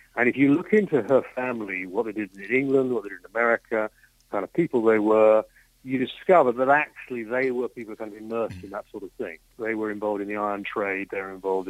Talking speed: 240 wpm